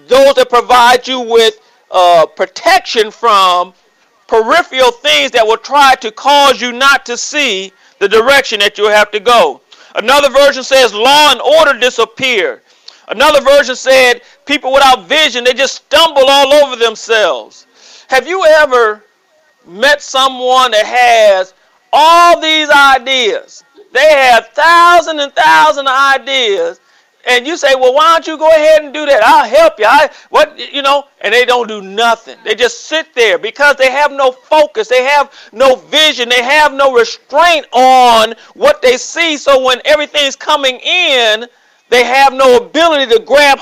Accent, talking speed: American, 160 wpm